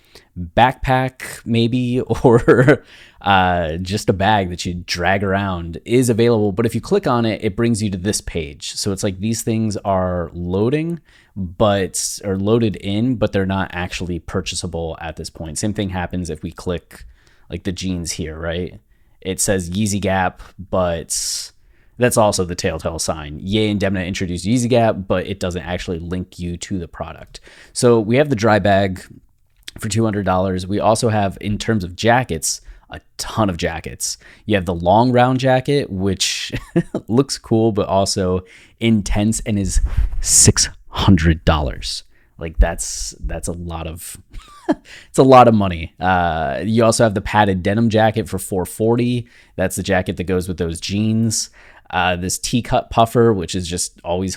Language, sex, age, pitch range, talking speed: English, male, 20-39, 90-110 Hz, 165 wpm